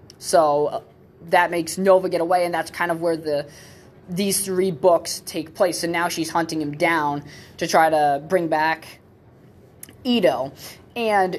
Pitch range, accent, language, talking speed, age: 155-185 Hz, American, English, 165 wpm, 20-39